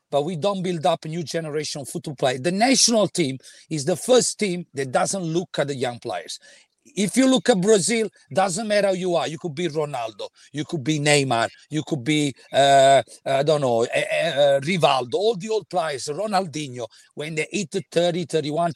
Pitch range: 150-195 Hz